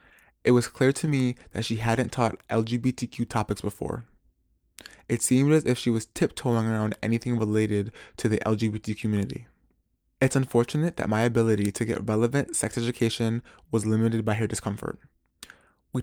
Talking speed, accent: 155 wpm, American